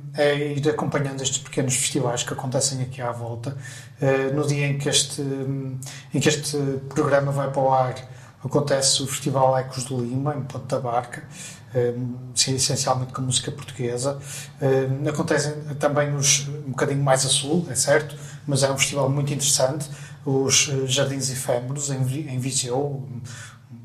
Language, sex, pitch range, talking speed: Portuguese, male, 130-145 Hz, 150 wpm